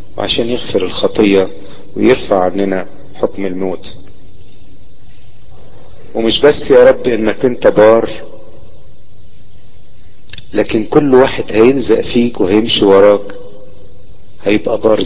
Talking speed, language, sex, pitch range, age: 90 wpm, Arabic, male, 100-120 Hz, 40-59